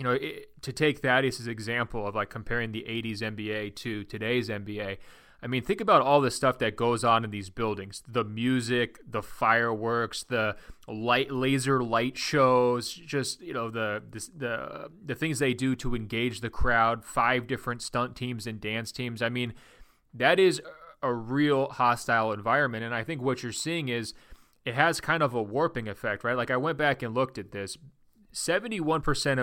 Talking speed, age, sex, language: 180 wpm, 20-39, male, English